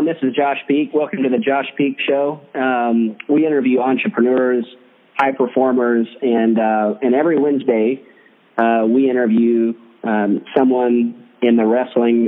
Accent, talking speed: American, 140 wpm